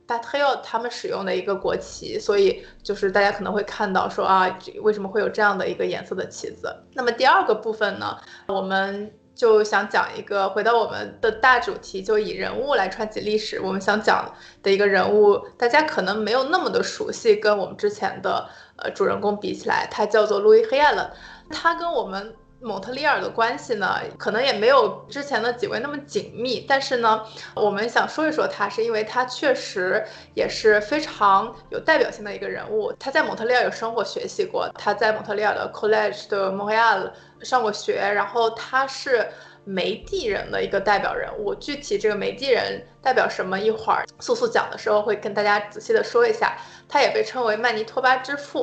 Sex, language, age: female, Chinese, 20-39